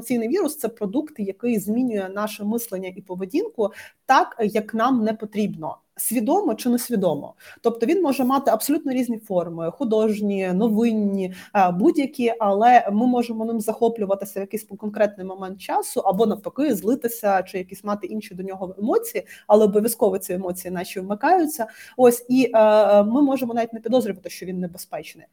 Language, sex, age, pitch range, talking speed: Ukrainian, female, 20-39, 195-240 Hz, 155 wpm